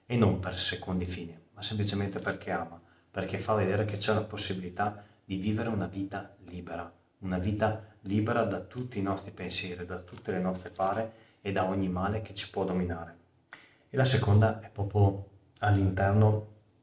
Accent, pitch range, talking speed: native, 90-110 Hz, 170 wpm